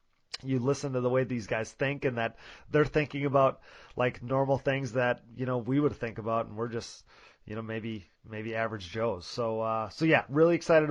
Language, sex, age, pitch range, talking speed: English, male, 30-49, 125-150 Hz, 210 wpm